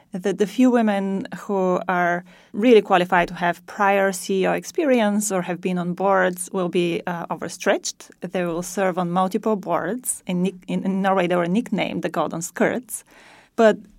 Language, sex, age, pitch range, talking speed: English, female, 30-49, 180-220 Hz, 165 wpm